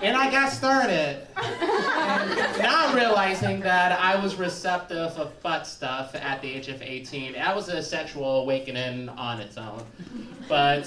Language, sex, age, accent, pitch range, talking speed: English, male, 30-49, American, 135-190 Hz, 160 wpm